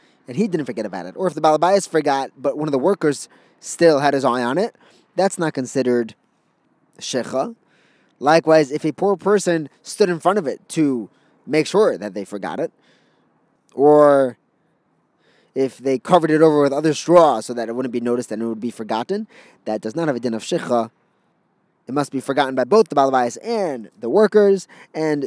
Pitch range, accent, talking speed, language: 125-170 Hz, American, 195 wpm, English